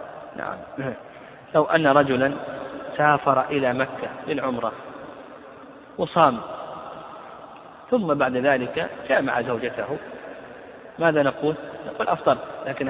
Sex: male